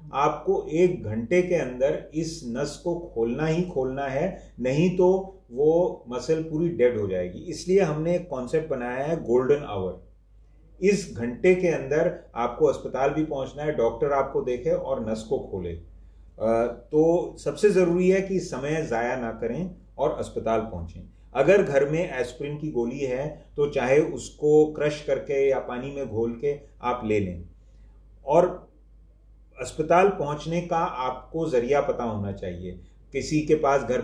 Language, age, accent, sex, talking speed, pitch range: Hindi, 30-49, native, male, 155 wpm, 120-155 Hz